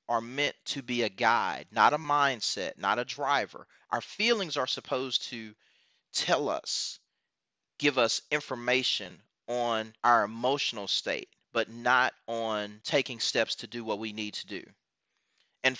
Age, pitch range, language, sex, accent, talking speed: 30-49, 115-155 Hz, English, male, American, 150 wpm